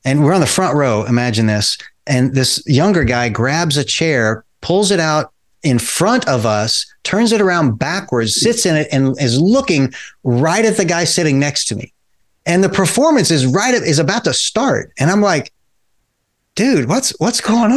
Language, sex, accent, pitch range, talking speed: English, male, American, 125-170 Hz, 190 wpm